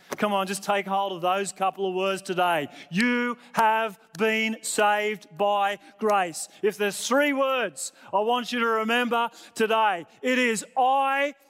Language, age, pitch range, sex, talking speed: English, 30-49, 205-255 Hz, male, 155 wpm